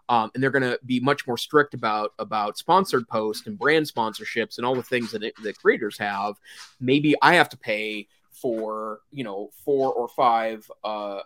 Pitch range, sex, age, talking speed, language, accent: 115-150 Hz, male, 30-49, 195 wpm, English, American